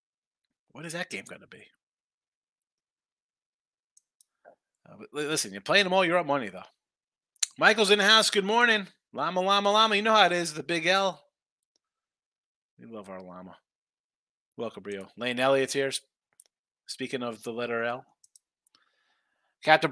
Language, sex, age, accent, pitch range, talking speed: English, male, 30-49, American, 130-185 Hz, 150 wpm